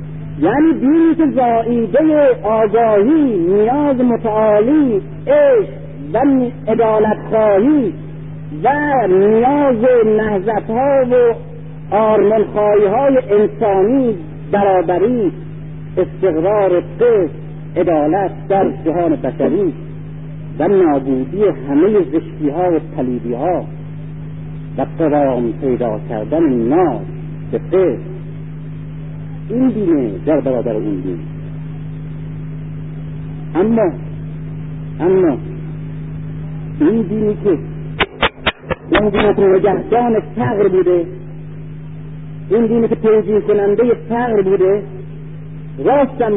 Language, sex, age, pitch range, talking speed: Persian, male, 50-69, 155-225 Hz, 80 wpm